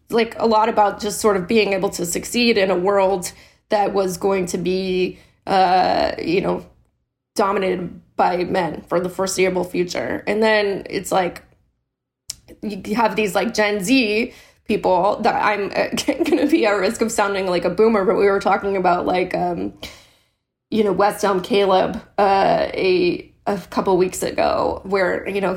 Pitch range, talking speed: 185-220 Hz, 170 wpm